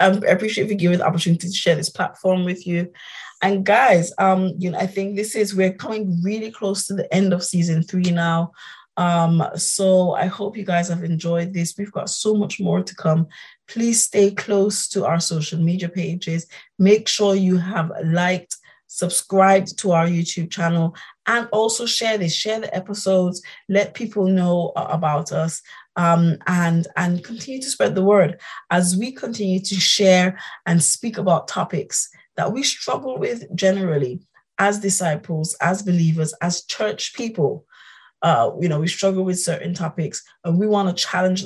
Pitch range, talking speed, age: 170-200 Hz, 175 wpm, 20-39